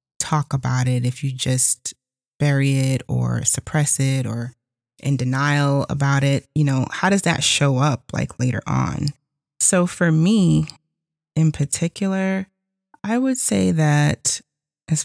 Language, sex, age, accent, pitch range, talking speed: English, female, 20-39, American, 125-155 Hz, 145 wpm